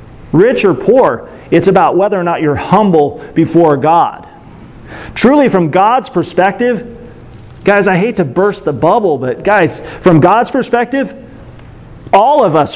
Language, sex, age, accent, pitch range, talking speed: English, male, 40-59, American, 180-230 Hz, 145 wpm